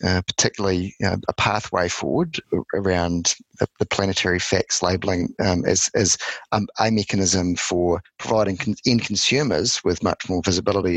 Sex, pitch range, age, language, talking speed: male, 90-100 Hz, 30-49, English, 155 wpm